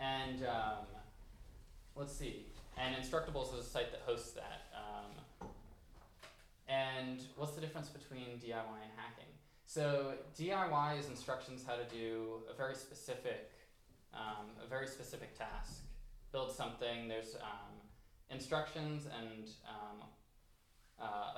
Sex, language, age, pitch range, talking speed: male, English, 20-39, 110-135 Hz, 125 wpm